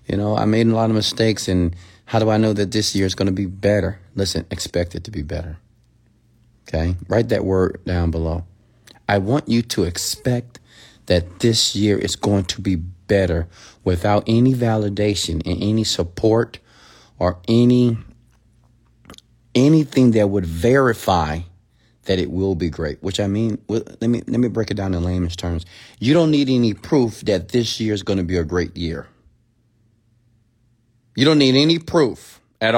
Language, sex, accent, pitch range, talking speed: English, male, American, 100-130 Hz, 180 wpm